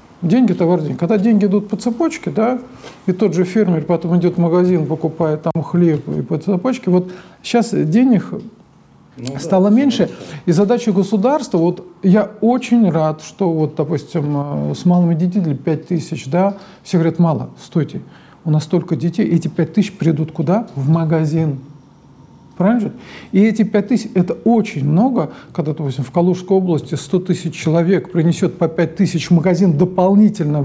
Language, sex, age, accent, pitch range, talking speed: Russian, male, 50-69, native, 160-205 Hz, 165 wpm